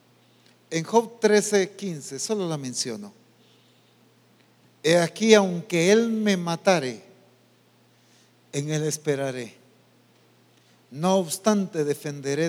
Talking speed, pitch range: 90 wpm, 135-200 Hz